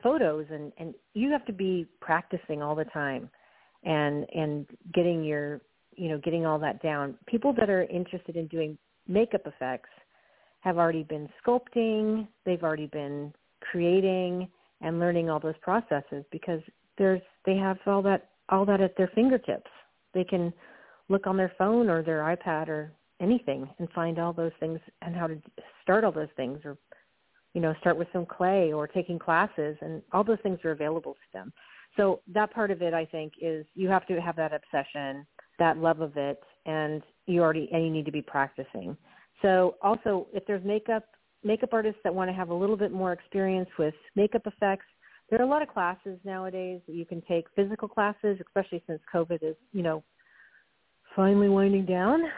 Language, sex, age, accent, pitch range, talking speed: English, female, 40-59, American, 160-195 Hz, 185 wpm